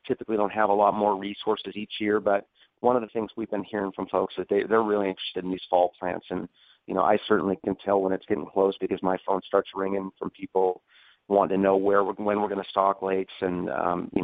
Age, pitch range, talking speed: 30-49, 95-105 Hz, 255 wpm